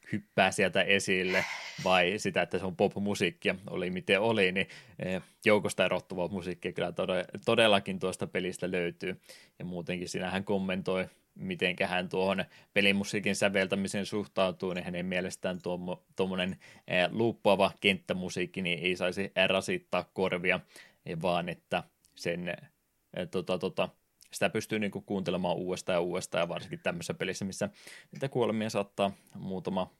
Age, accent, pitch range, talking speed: 20-39, native, 90-100 Hz, 130 wpm